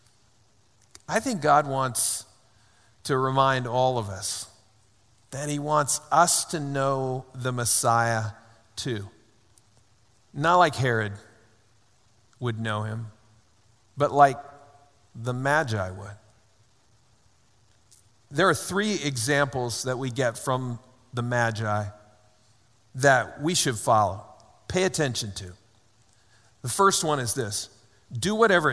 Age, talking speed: 50-69, 110 wpm